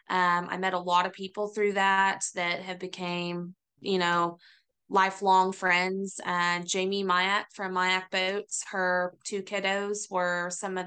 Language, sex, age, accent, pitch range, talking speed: English, female, 20-39, American, 180-205 Hz, 155 wpm